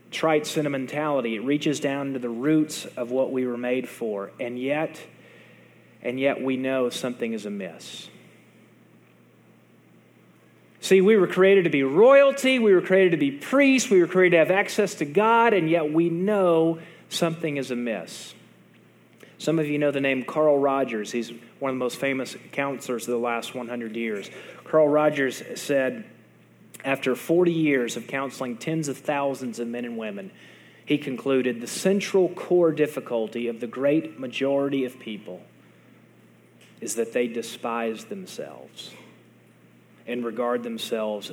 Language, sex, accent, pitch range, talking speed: English, male, American, 120-160 Hz, 155 wpm